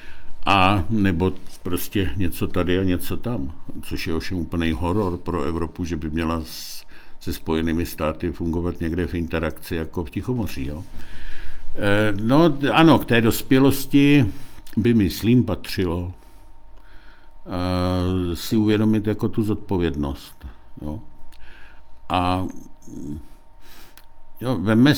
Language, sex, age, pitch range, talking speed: Czech, male, 60-79, 80-110 Hz, 115 wpm